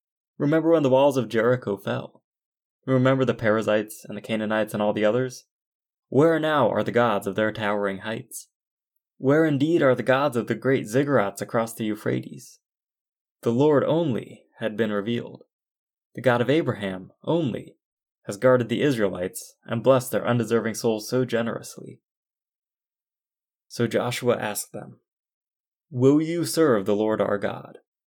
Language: English